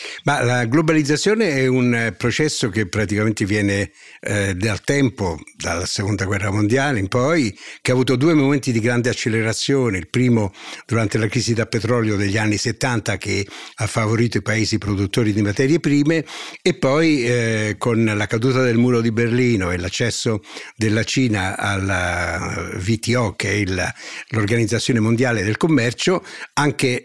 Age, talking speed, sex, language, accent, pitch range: 60-79, 155 wpm, male, Italian, native, 105-135 Hz